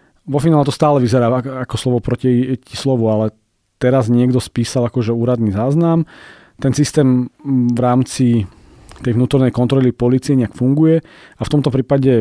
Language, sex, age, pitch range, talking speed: Slovak, male, 40-59, 110-130 Hz, 150 wpm